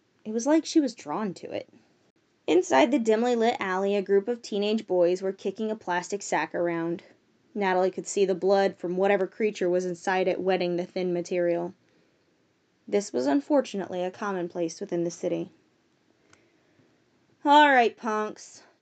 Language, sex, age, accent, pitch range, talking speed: English, female, 20-39, American, 185-235 Hz, 160 wpm